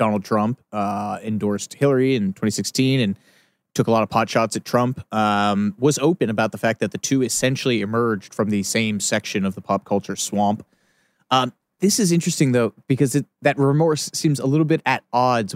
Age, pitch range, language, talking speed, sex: 30-49, 110-145 Hz, English, 195 wpm, male